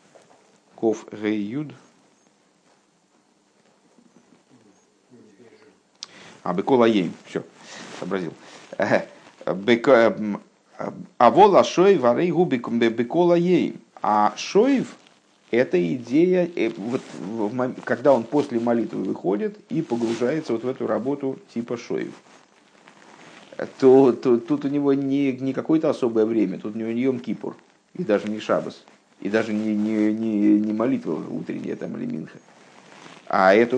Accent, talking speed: native, 105 wpm